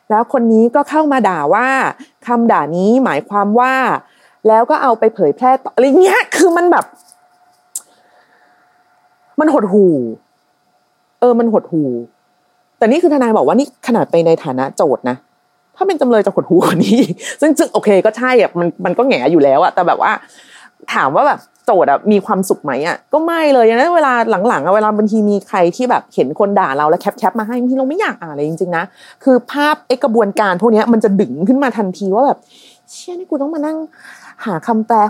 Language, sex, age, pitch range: Thai, female, 30-49, 190-265 Hz